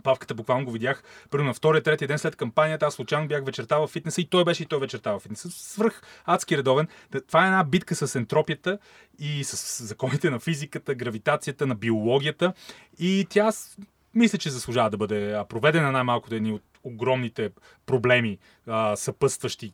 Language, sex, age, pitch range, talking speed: Bulgarian, male, 30-49, 120-155 Hz, 175 wpm